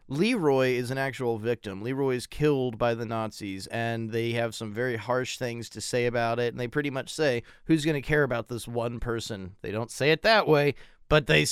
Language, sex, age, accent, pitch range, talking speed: English, male, 30-49, American, 120-155 Hz, 225 wpm